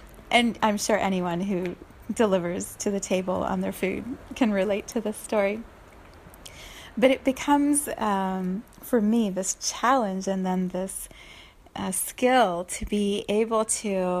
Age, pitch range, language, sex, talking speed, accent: 30-49, 185-250 Hz, English, female, 145 wpm, American